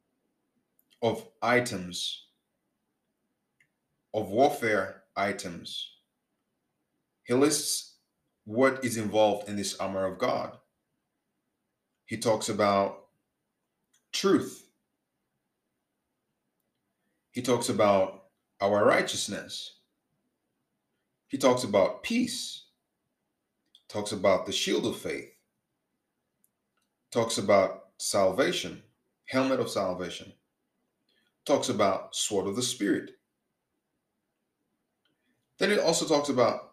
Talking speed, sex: 85 wpm, male